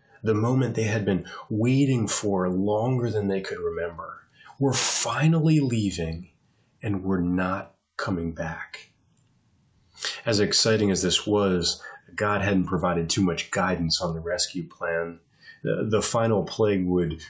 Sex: male